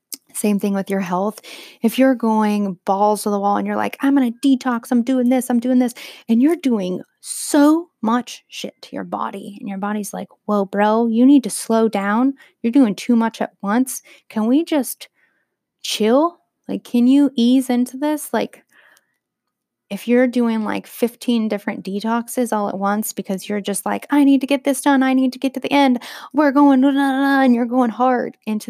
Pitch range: 210-275 Hz